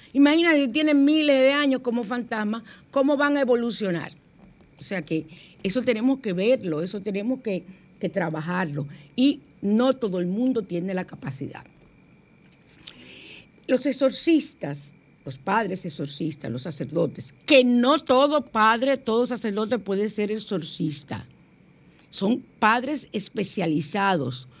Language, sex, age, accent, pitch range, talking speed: Spanish, female, 50-69, American, 160-240 Hz, 120 wpm